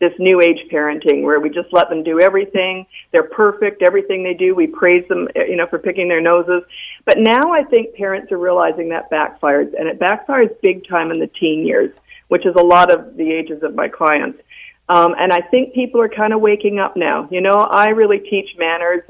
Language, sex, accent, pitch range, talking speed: English, female, American, 180-250 Hz, 220 wpm